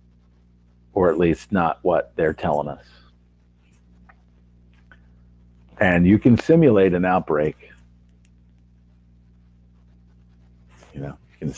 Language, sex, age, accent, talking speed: English, male, 50-69, American, 95 wpm